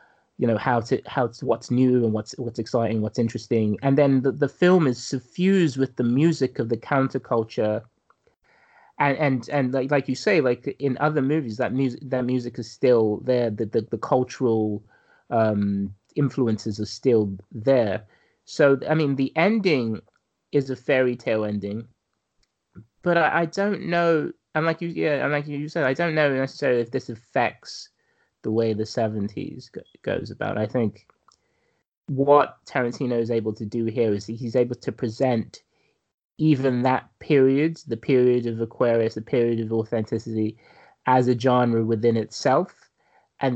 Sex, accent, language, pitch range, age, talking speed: male, British, English, 115-140 Hz, 30-49, 165 wpm